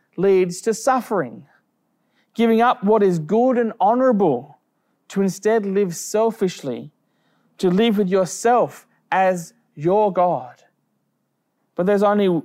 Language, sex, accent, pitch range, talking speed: English, male, Australian, 170-220 Hz, 115 wpm